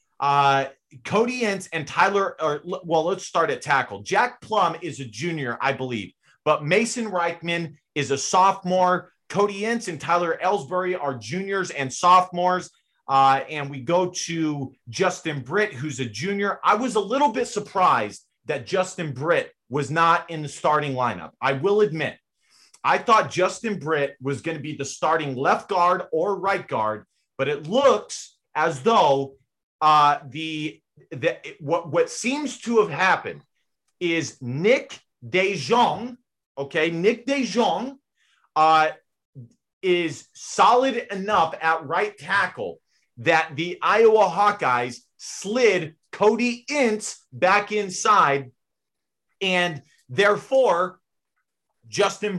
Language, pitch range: English, 150-200 Hz